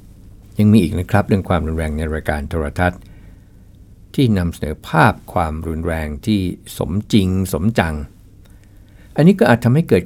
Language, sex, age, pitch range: Thai, male, 60-79, 85-100 Hz